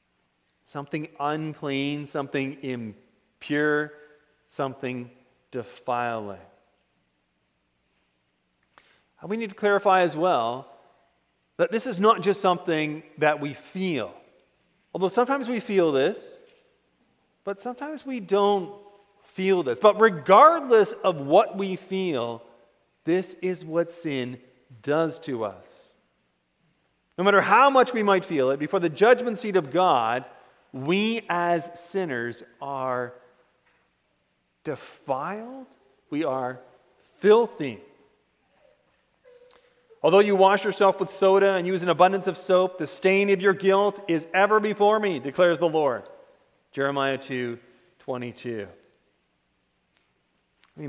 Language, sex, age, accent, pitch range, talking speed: English, male, 40-59, American, 125-200 Hz, 110 wpm